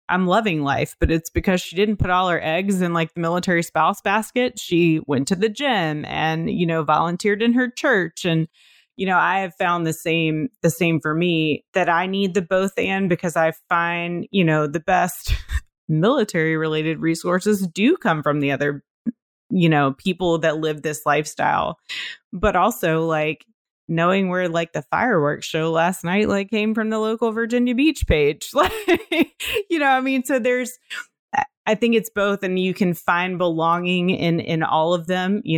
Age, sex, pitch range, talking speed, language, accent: 30-49, female, 160-210 Hz, 185 wpm, English, American